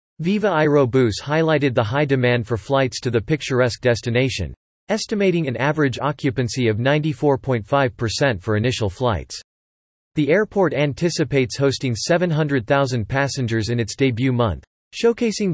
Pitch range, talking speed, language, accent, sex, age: 115-150 Hz, 125 wpm, English, American, male, 40-59